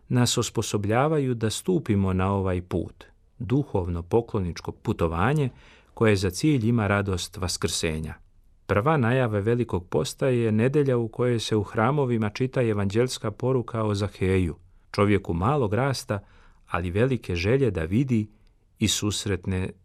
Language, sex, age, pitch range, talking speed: Croatian, male, 40-59, 95-125 Hz, 125 wpm